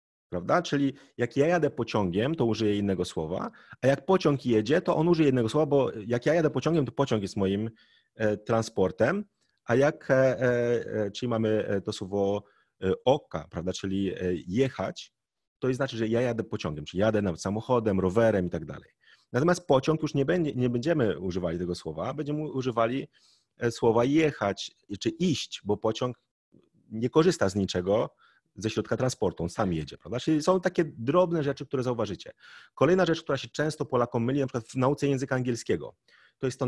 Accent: native